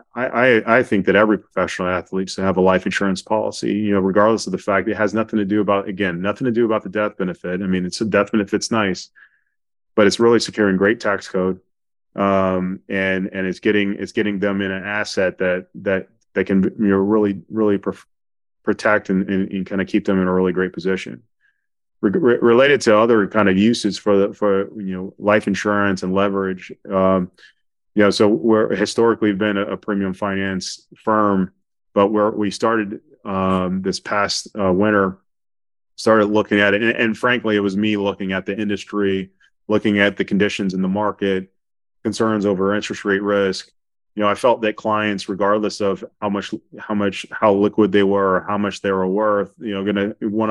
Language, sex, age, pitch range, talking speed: English, male, 30-49, 95-105 Hz, 205 wpm